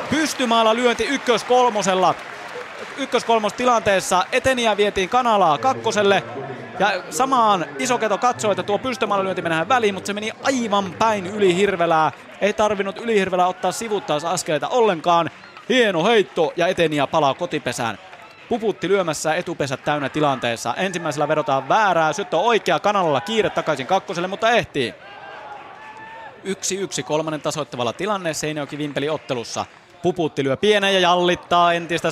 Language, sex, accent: Finnish, male, native